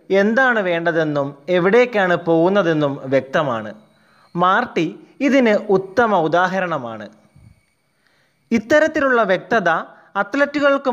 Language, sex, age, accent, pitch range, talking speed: Malayalam, male, 20-39, native, 160-215 Hz, 65 wpm